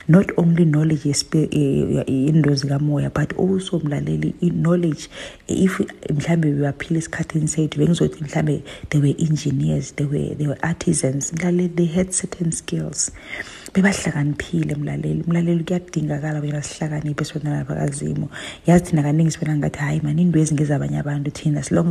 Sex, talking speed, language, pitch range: female, 70 wpm, English, 145-170 Hz